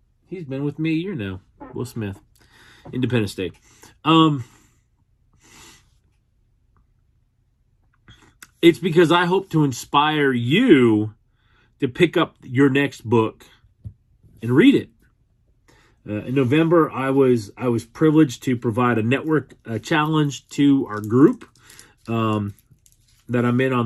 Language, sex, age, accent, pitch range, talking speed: English, male, 40-59, American, 110-135 Hz, 125 wpm